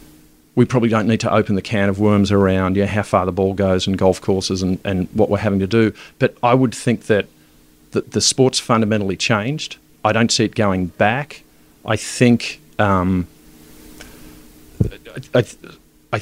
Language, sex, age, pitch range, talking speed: English, male, 40-59, 95-115 Hz, 180 wpm